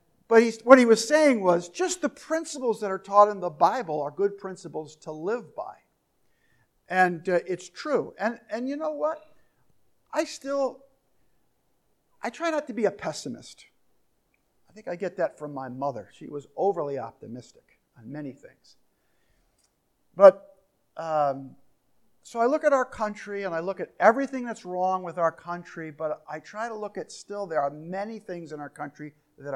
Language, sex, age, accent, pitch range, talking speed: English, male, 50-69, American, 150-200 Hz, 175 wpm